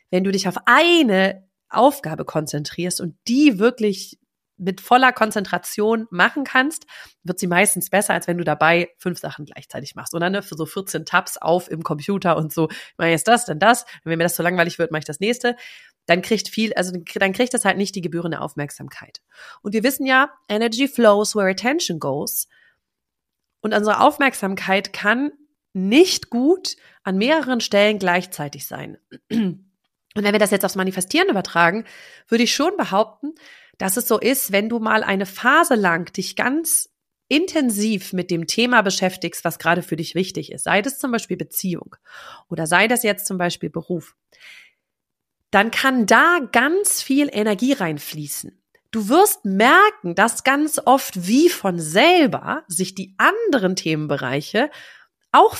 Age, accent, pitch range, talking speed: 30-49, German, 175-250 Hz, 165 wpm